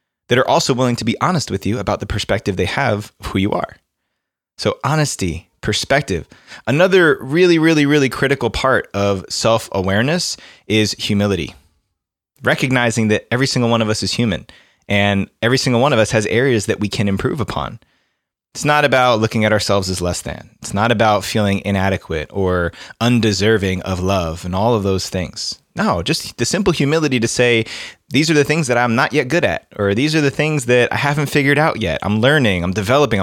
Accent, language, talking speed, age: American, English, 195 wpm, 20-39